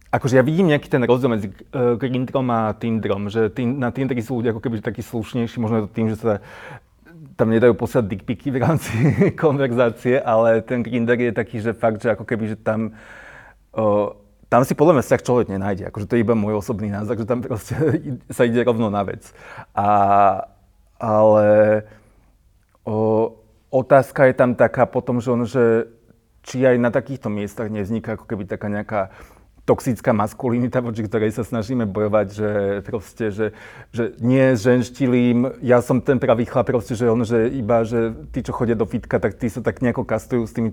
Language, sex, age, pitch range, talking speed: Slovak, male, 30-49, 110-125 Hz, 180 wpm